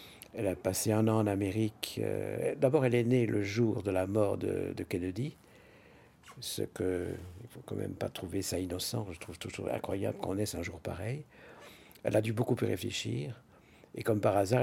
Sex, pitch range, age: male, 95-120 Hz, 60-79